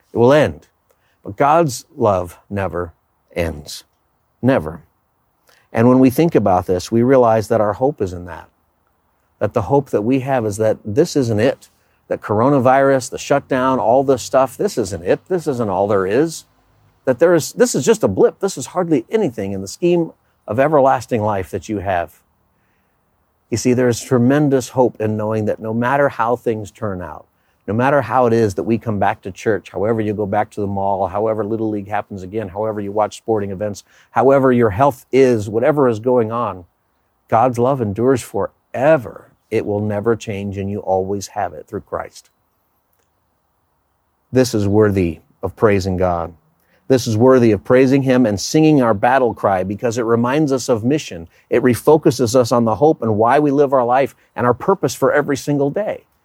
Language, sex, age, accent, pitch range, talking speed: English, male, 50-69, American, 100-135 Hz, 190 wpm